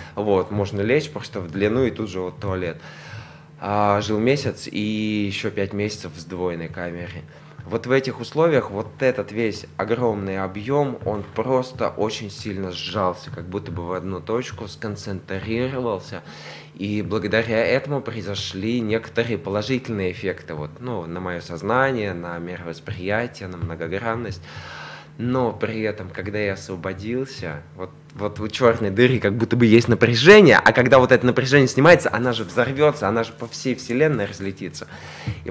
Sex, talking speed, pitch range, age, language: male, 145 wpm, 95-120 Hz, 20-39, Russian